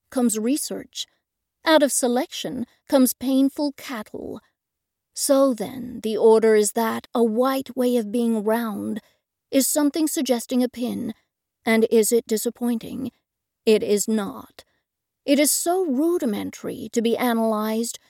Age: 40-59